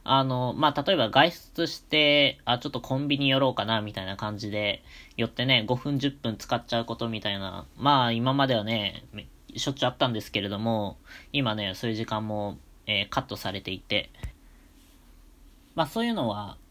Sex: female